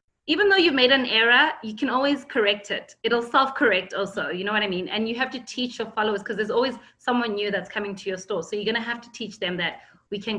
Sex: female